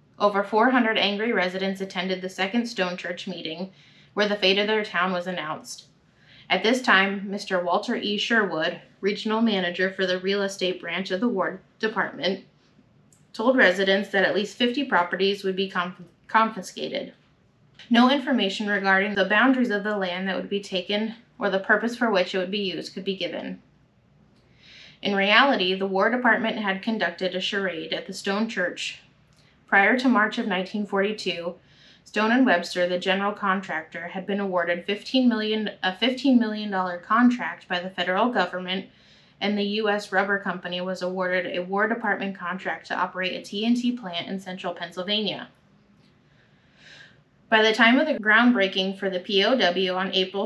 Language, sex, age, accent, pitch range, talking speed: English, female, 20-39, American, 180-215 Hz, 165 wpm